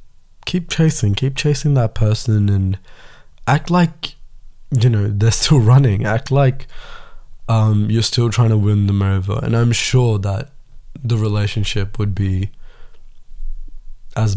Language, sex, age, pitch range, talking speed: Tamil, male, 20-39, 105-130 Hz, 140 wpm